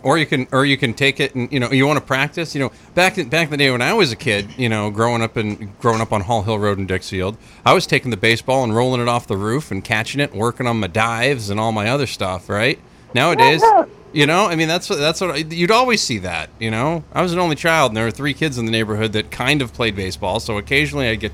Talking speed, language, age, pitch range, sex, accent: 290 wpm, English, 30-49, 110-145 Hz, male, American